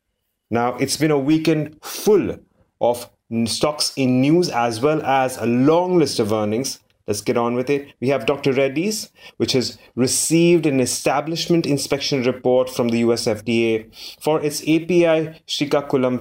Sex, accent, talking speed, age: male, Indian, 150 wpm, 30-49